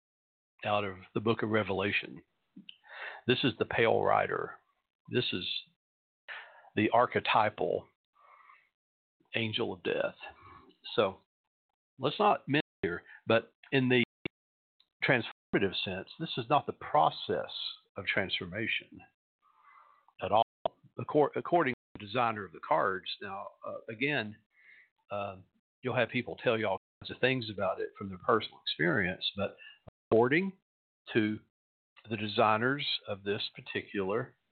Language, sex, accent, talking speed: English, male, American, 125 wpm